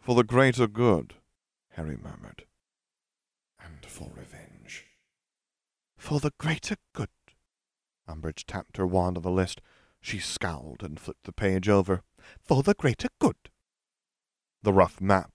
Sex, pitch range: male, 85-135 Hz